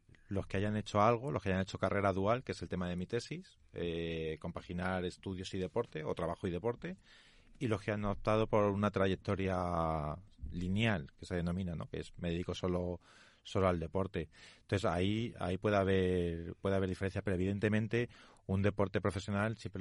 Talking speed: 190 wpm